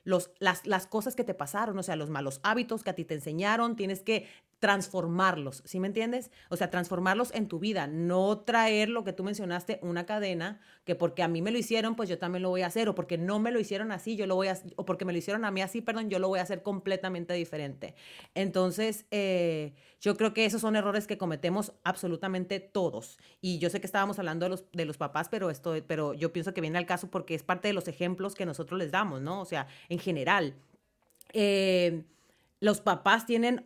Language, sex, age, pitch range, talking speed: Spanish, female, 30-49, 165-205 Hz, 230 wpm